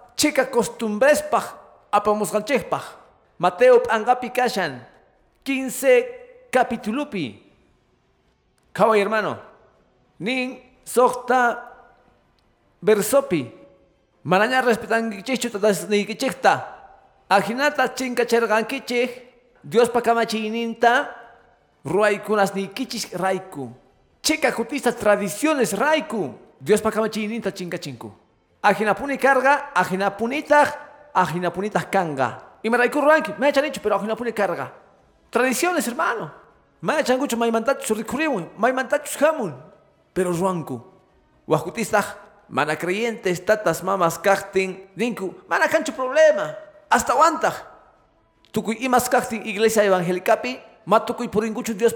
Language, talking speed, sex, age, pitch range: Spanish, 95 wpm, male, 50-69, 195-250 Hz